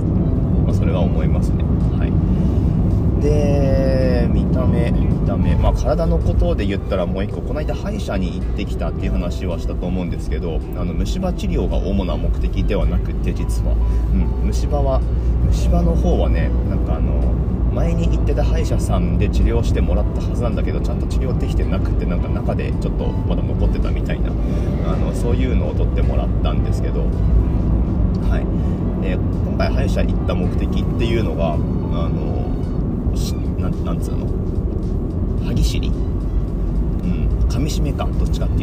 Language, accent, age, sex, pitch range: Japanese, native, 30-49, male, 80-95 Hz